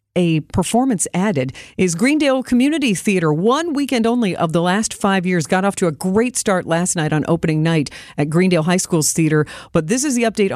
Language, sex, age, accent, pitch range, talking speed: English, female, 50-69, American, 155-205 Hz, 205 wpm